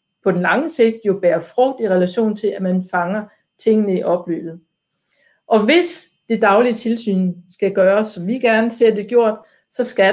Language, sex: Danish, female